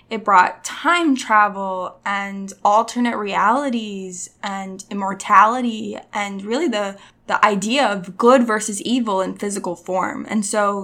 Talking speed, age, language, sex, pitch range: 125 wpm, 10-29, English, female, 200-245 Hz